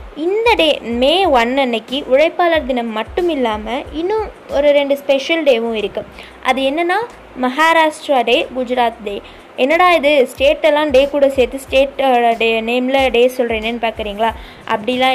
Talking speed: 140 wpm